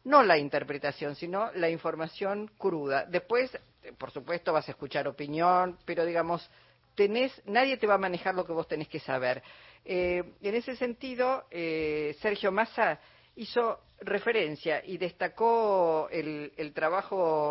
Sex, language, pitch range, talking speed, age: female, Spanish, 145-185 Hz, 145 wpm, 40-59